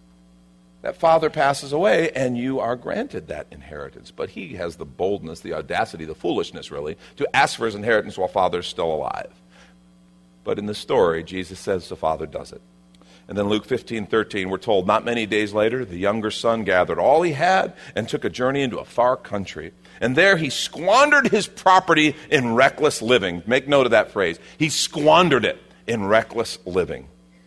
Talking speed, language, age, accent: 190 wpm, English, 50-69, American